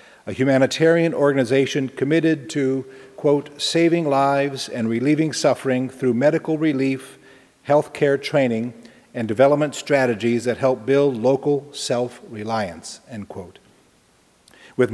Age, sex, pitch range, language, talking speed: 50-69, male, 120-145 Hz, English, 115 wpm